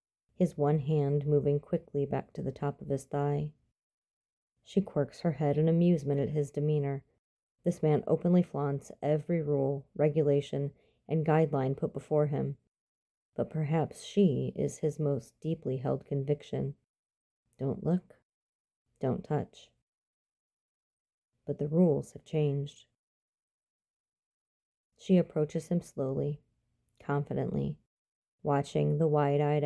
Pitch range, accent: 140-155 Hz, American